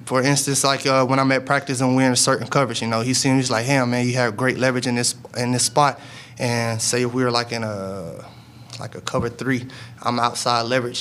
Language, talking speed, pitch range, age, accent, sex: English, 245 wpm, 115-130 Hz, 20-39, American, male